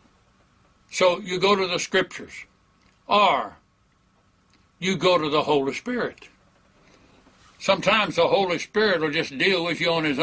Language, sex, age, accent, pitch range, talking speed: English, male, 60-79, American, 140-185 Hz, 140 wpm